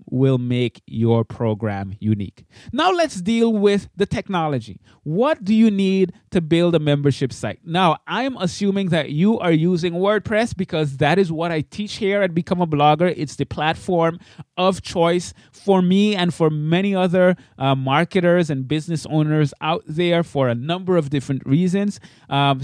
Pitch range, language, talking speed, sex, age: 130-185 Hz, English, 170 wpm, male, 20-39